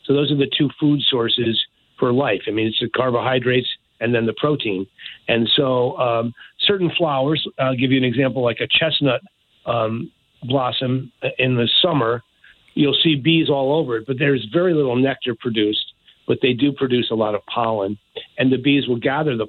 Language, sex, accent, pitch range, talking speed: English, male, American, 120-145 Hz, 190 wpm